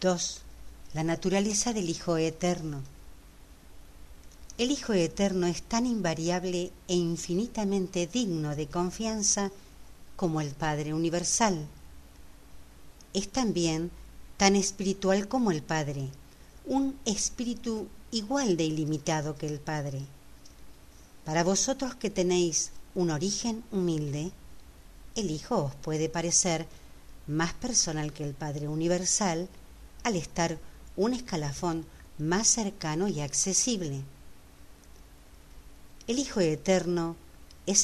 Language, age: Spanish, 50-69